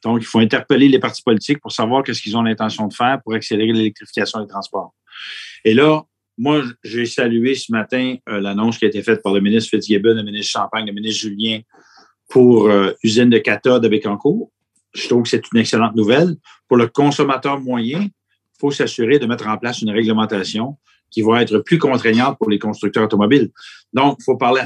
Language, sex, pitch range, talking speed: French, male, 110-135 Hz, 205 wpm